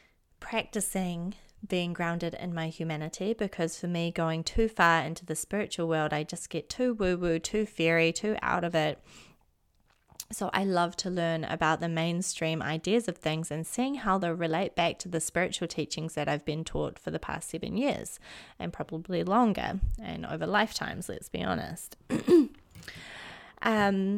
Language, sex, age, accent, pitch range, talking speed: English, female, 20-39, Australian, 165-205 Hz, 170 wpm